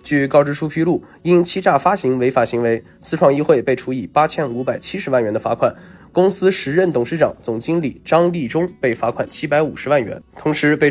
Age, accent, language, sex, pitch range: 20-39, native, Chinese, male, 125-165 Hz